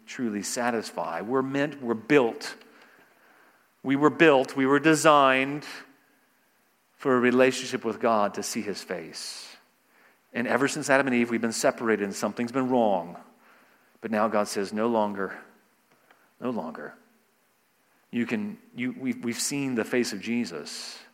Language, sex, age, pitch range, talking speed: English, male, 40-59, 105-140 Hz, 150 wpm